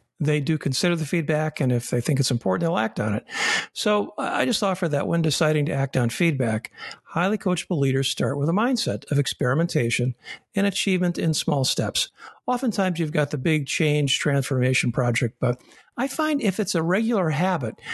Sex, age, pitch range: male, 50-69, 135-185 Hz